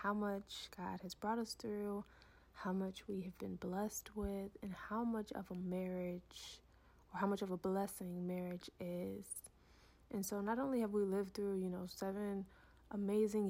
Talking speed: 180 wpm